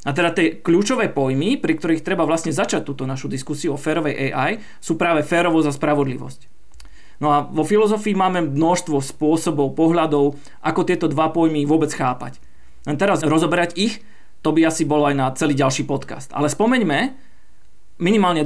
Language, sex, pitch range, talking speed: Slovak, male, 145-180 Hz, 165 wpm